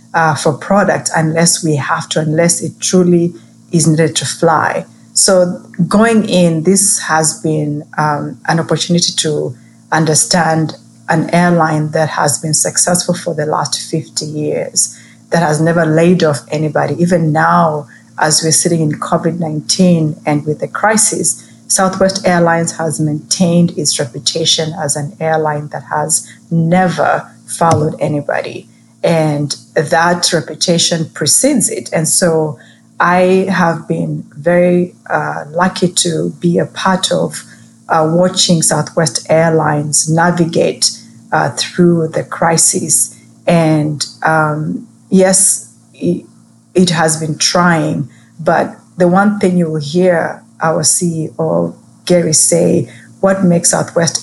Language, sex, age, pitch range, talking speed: English, female, 30-49, 150-175 Hz, 125 wpm